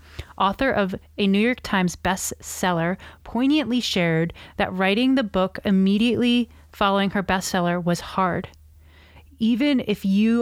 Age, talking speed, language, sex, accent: 30-49, 125 wpm, English, female, American